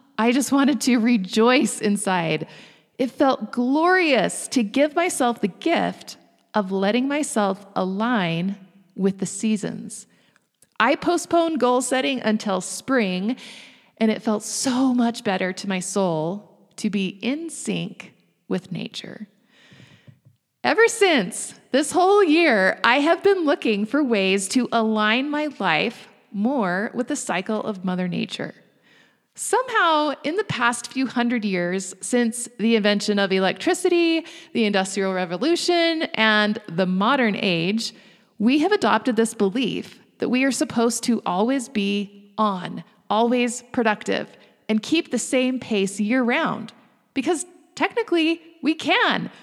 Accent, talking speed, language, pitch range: American, 130 wpm, English, 200-280 Hz